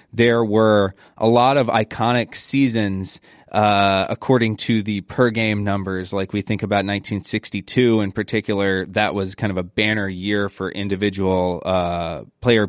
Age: 20-39